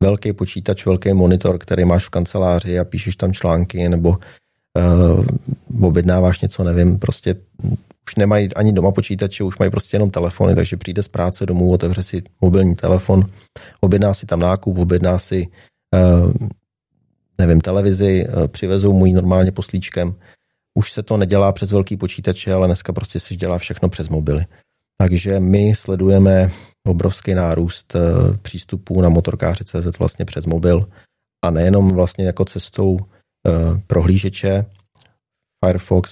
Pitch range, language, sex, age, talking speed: 90-100 Hz, Czech, male, 30-49, 145 wpm